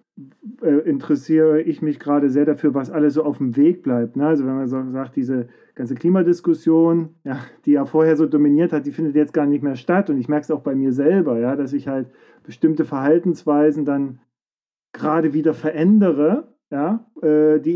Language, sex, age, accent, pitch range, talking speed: German, male, 40-59, German, 140-165 Hz, 195 wpm